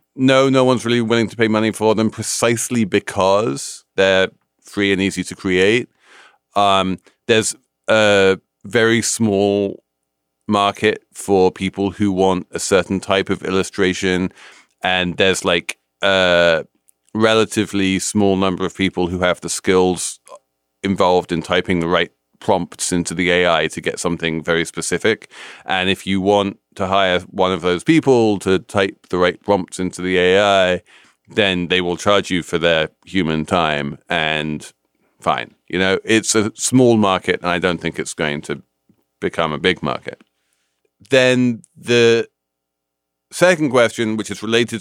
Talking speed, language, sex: 150 wpm, English, male